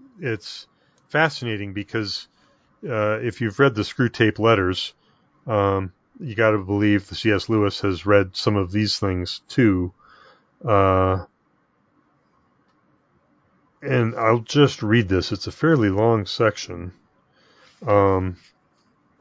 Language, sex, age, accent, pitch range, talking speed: English, male, 40-59, American, 105-125 Hz, 120 wpm